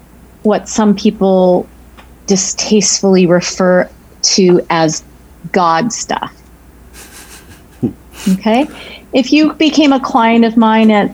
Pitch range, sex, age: 160-200 Hz, female, 40-59